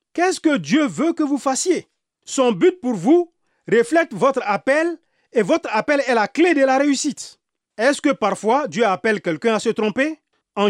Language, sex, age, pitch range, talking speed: French, male, 40-59, 195-280 Hz, 185 wpm